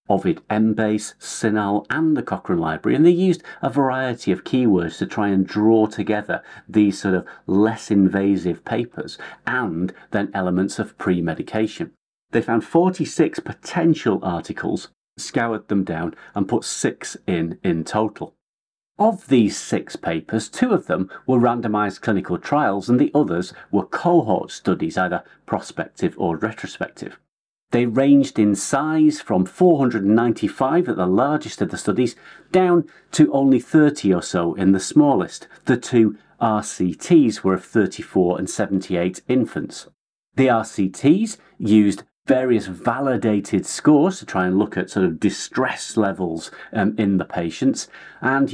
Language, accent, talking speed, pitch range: English, British, 140 wpm, 95-130 Hz